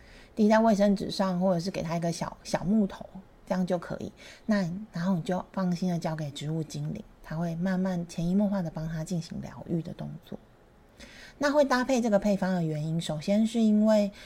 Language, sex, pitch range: Chinese, female, 170-210 Hz